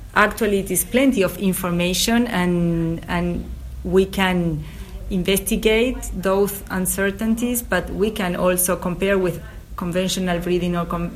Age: 30-49